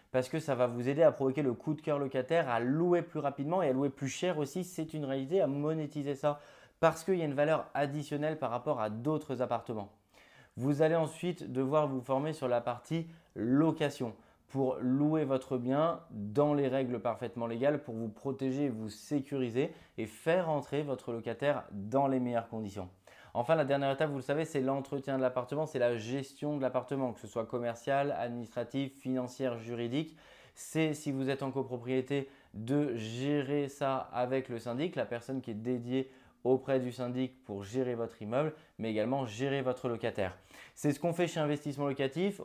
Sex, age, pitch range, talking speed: male, 20-39, 125-150 Hz, 190 wpm